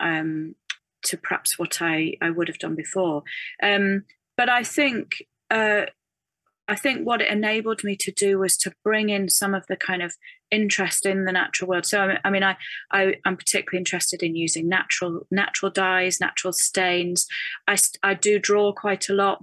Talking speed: 180 wpm